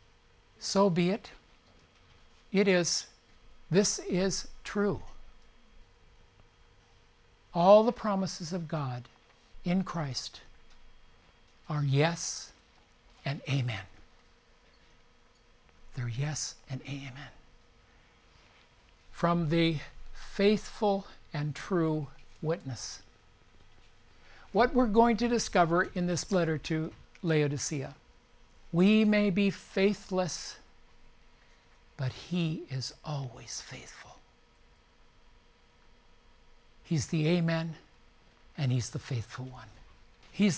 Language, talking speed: English, 85 wpm